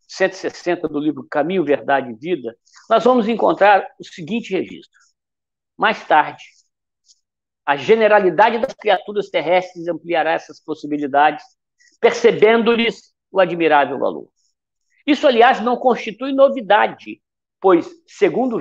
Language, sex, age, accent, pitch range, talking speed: Portuguese, male, 60-79, Brazilian, 175-245 Hz, 110 wpm